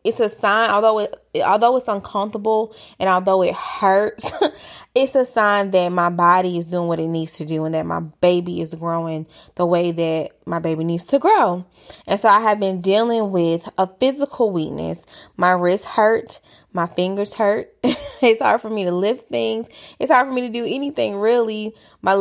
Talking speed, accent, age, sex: 190 wpm, American, 20-39, female